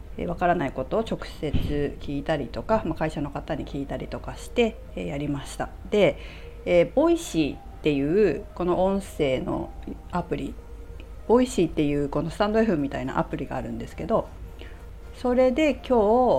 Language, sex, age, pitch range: Japanese, female, 40-59, 140-200 Hz